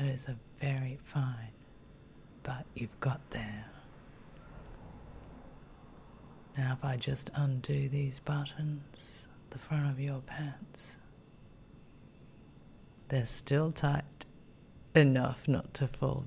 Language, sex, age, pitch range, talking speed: English, female, 30-49, 135-155 Hz, 105 wpm